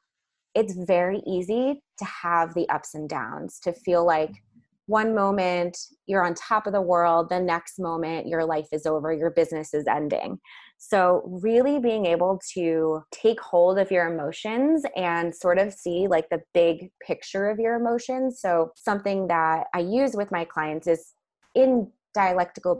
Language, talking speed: English, 165 wpm